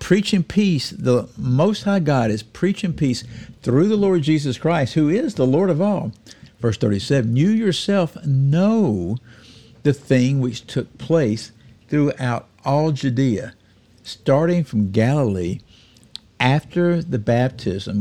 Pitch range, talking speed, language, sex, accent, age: 115-170 Hz, 130 wpm, English, male, American, 60-79